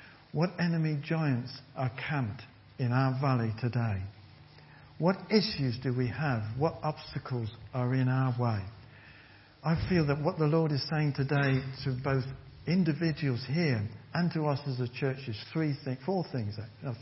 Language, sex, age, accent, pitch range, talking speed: English, male, 60-79, British, 120-145 Hz, 155 wpm